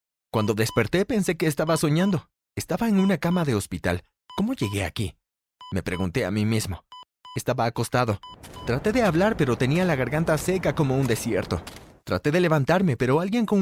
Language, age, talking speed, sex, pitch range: Spanish, 30-49, 170 wpm, male, 110-170 Hz